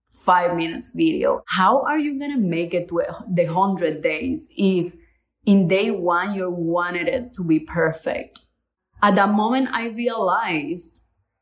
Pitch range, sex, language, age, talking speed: 175-225 Hz, female, English, 20-39, 145 wpm